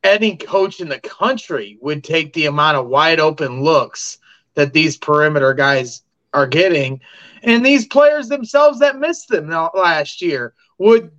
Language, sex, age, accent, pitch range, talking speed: English, male, 30-49, American, 155-200 Hz, 155 wpm